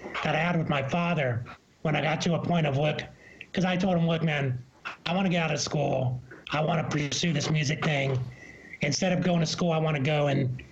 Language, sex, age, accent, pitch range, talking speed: English, male, 30-49, American, 145-175 Hz, 245 wpm